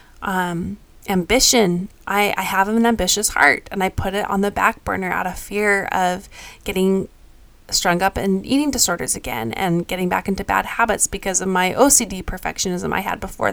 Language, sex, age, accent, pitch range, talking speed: English, female, 20-39, American, 195-245 Hz, 180 wpm